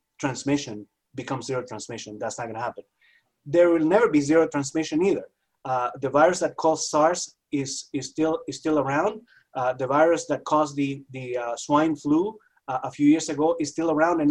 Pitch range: 135-170 Hz